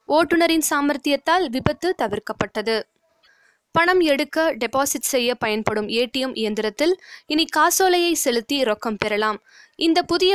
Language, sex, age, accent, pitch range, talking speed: Tamil, female, 20-39, native, 230-310 Hz, 105 wpm